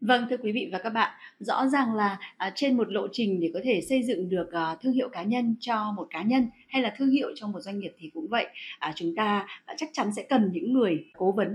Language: Vietnamese